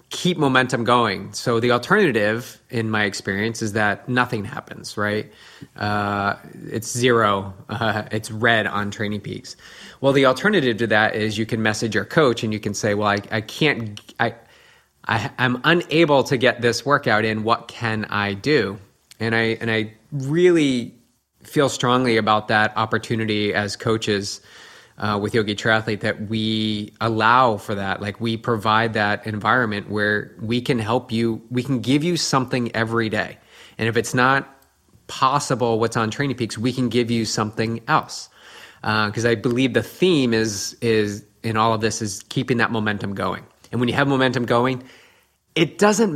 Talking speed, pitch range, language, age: 175 wpm, 105-125 Hz, English, 30-49